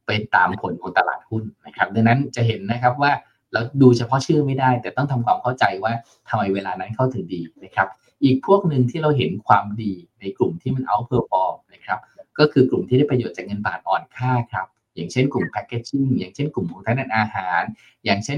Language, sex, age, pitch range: Thai, male, 20-39, 110-130 Hz